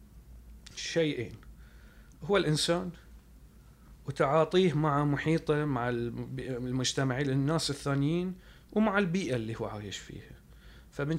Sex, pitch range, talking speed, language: male, 120-150 Hz, 90 wpm, Arabic